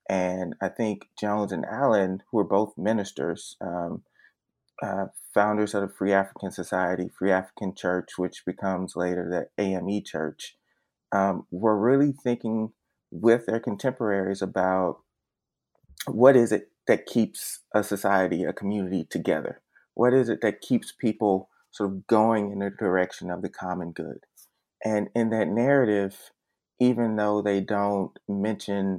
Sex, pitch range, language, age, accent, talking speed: male, 95-105 Hz, English, 30-49, American, 145 wpm